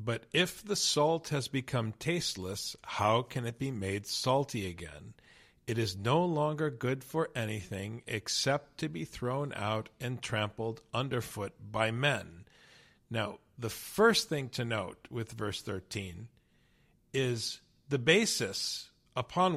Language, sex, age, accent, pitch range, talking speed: English, male, 50-69, American, 110-150 Hz, 135 wpm